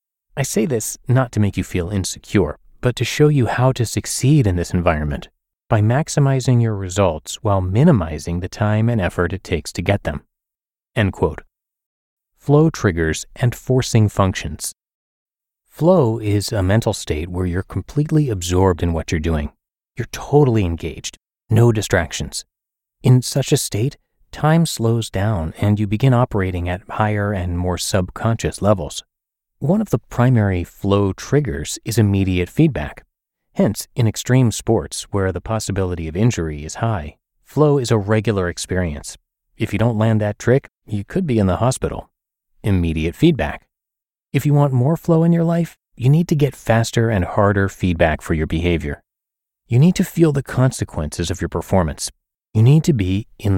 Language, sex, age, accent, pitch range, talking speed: English, male, 30-49, American, 90-125 Hz, 165 wpm